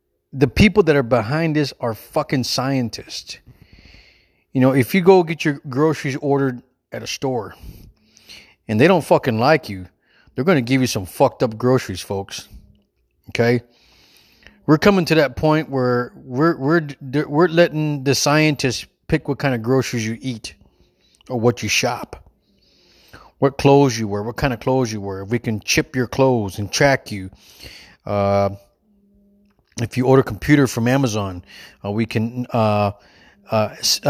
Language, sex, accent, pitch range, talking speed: English, male, American, 110-140 Hz, 165 wpm